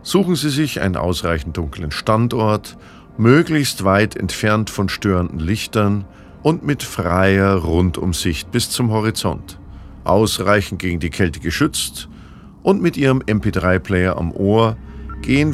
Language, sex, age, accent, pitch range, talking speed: German, male, 50-69, German, 95-120 Hz, 125 wpm